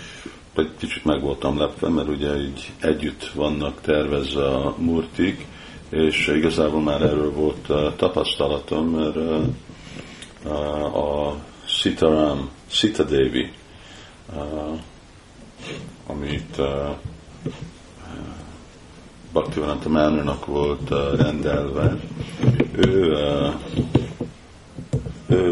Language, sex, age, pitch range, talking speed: Hungarian, male, 50-69, 70-80 Hz, 75 wpm